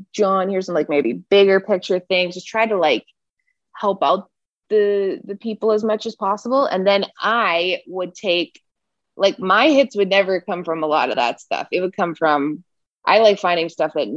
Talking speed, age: 200 wpm, 20-39